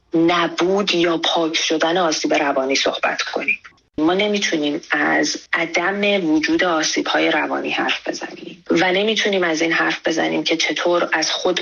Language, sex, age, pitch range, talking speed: Persian, female, 30-49, 155-195 Hz, 145 wpm